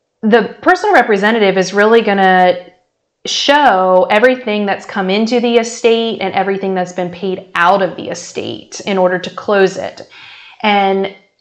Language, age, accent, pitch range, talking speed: English, 30-49, American, 185-235 Hz, 145 wpm